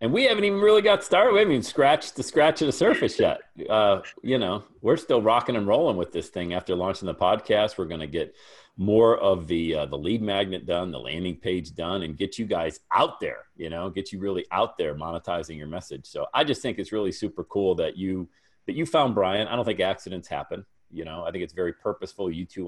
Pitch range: 85-115 Hz